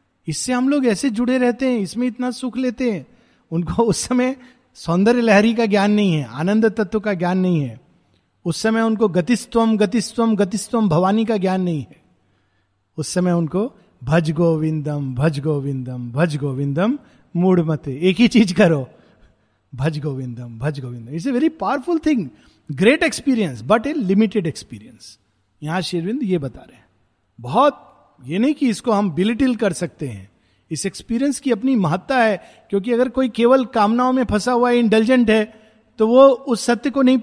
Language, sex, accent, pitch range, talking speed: Hindi, male, native, 155-235 Hz, 170 wpm